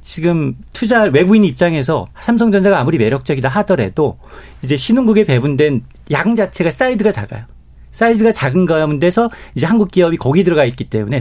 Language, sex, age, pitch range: Korean, male, 40-59, 125-200 Hz